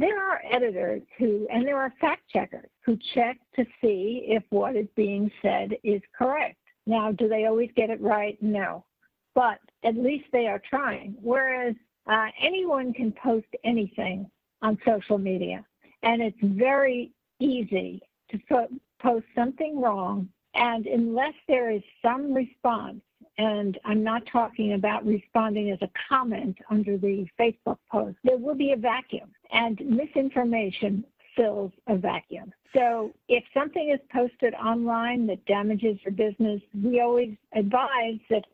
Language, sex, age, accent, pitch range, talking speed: English, female, 60-79, American, 210-255 Hz, 145 wpm